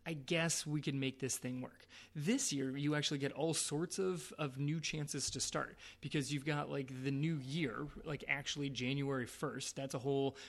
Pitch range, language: 135-155 Hz, English